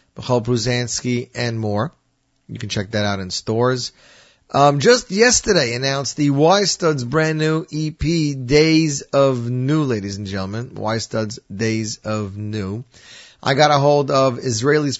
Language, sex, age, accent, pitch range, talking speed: English, male, 30-49, American, 110-135 Hz, 150 wpm